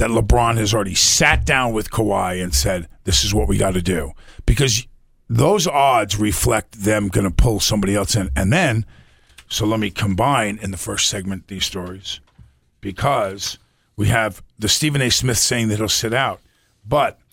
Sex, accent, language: male, American, English